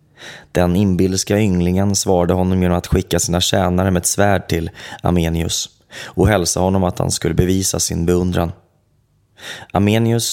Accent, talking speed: Swedish, 145 wpm